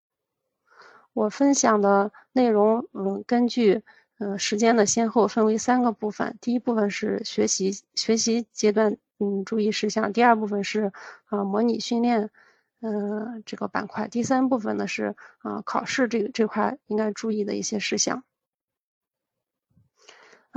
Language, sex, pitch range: Chinese, female, 205-245 Hz